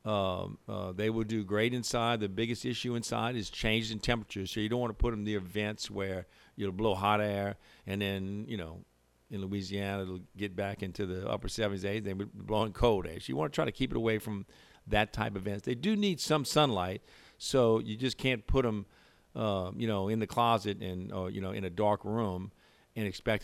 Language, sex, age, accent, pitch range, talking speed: English, male, 50-69, American, 95-115 Hz, 235 wpm